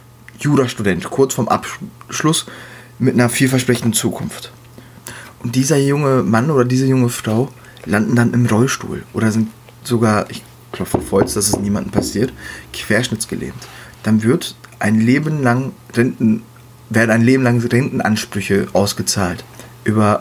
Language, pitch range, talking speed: German, 110-125 Hz, 130 wpm